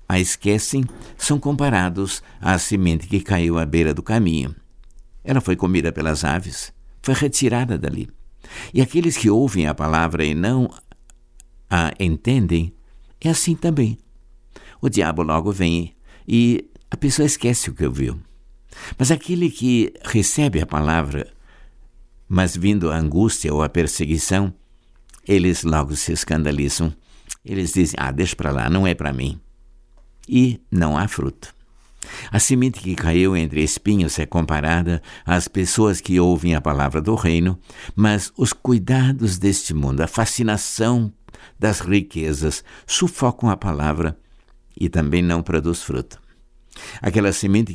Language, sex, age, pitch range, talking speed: Portuguese, male, 60-79, 80-110 Hz, 140 wpm